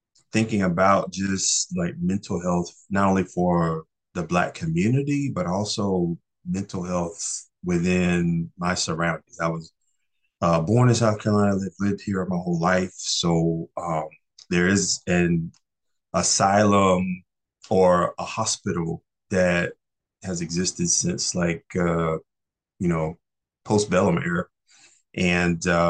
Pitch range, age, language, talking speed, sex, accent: 85-105 Hz, 30-49, English, 120 wpm, male, American